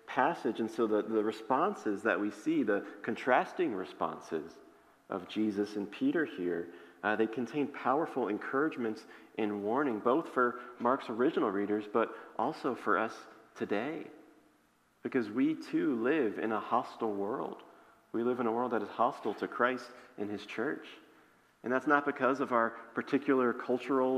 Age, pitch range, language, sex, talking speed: 40-59, 110-135 Hz, English, male, 155 wpm